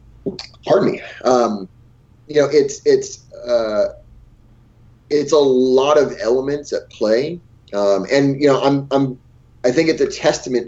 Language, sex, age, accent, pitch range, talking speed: English, male, 30-49, American, 115-155 Hz, 145 wpm